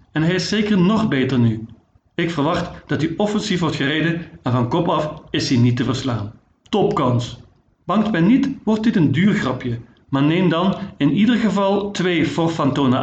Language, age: Dutch, 50-69